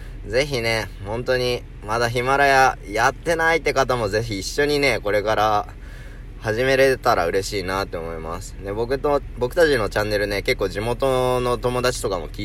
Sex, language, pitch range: male, Japanese, 100-125 Hz